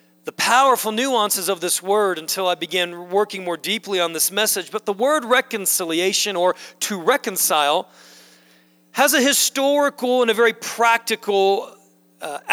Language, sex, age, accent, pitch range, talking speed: English, male, 40-59, American, 170-230 Hz, 145 wpm